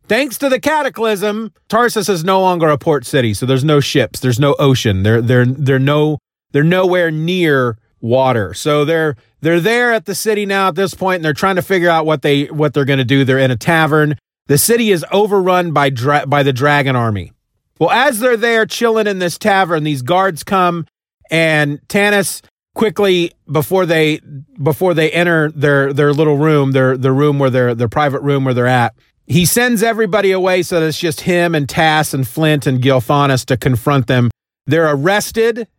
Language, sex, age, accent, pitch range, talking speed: English, male, 30-49, American, 135-180 Hz, 200 wpm